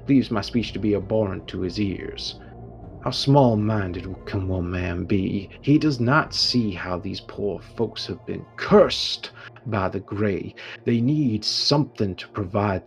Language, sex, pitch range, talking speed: English, male, 90-110 Hz, 160 wpm